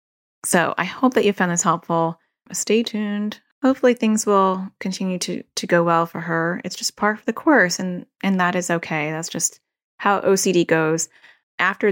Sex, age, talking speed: female, 30-49, 185 wpm